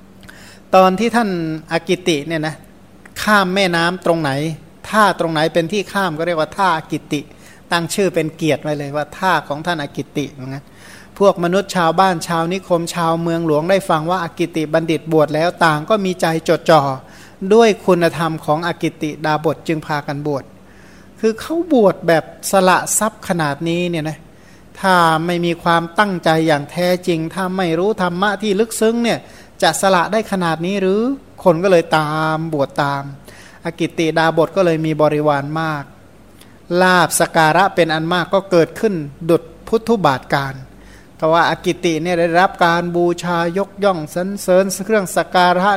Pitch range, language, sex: 155-185 Hz, Thai, male